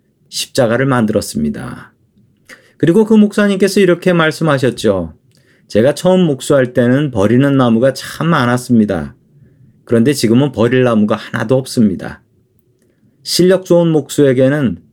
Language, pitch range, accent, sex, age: Korean, 120-165 Hz, native, male, 40-59